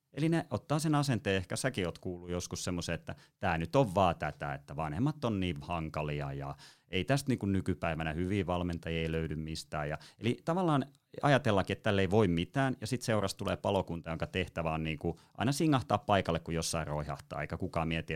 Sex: male